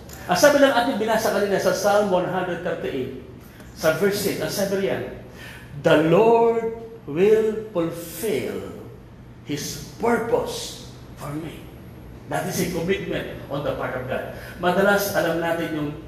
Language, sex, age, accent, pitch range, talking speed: Filipino, male, 40-59, native, 145-215 Hz, 135 wpm